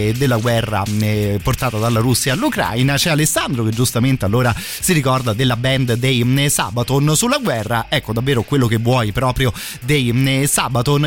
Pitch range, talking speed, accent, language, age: 115-140 Hz, 145 wpm, native, Italian, 30-49